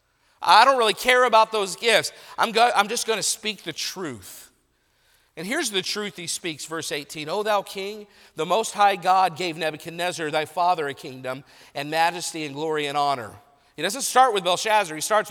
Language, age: English, 50-69